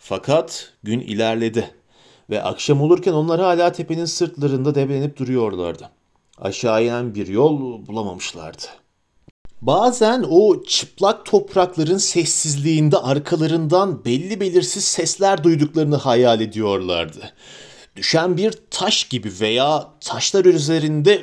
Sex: male